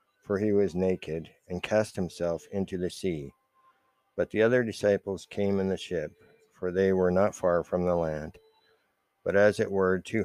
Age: 60-79